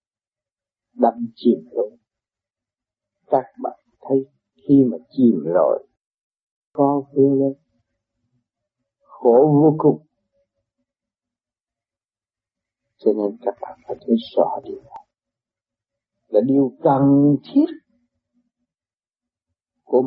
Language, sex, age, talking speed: Vietnamese, male, 50-69, 85 wpm